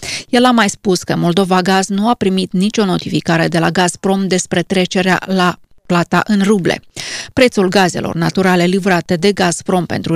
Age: 30-49